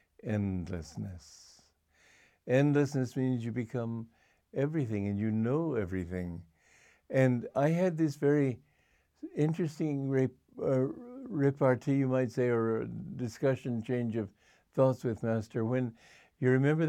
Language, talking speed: English, 105 wpm